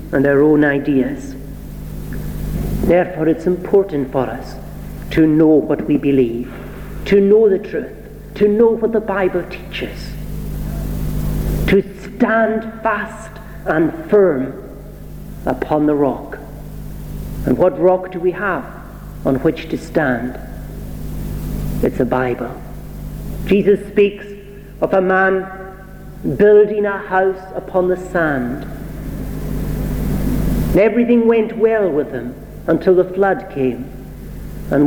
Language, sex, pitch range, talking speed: English, male, 135-195 Hz, 115 wpm